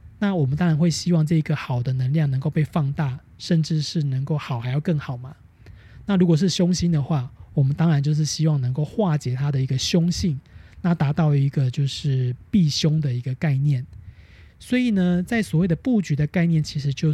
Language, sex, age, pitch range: Chinese, male, 20-39, 135-180 Hz